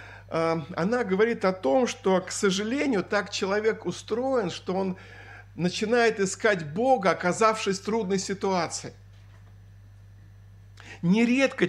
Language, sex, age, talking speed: Russian, male, 50-69, 105 wpm